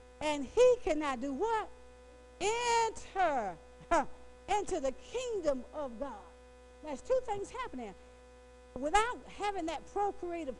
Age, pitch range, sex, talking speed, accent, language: 50-69, 250-375 Hz, female, 110 wpm, American, English